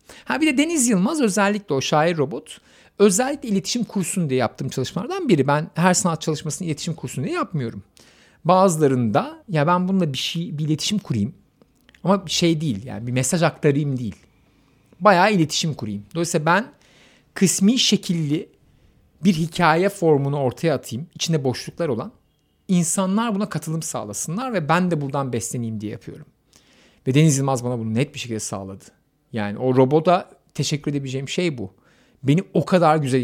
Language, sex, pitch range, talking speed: Turkish, male, 125-175 Hz, 160 wpm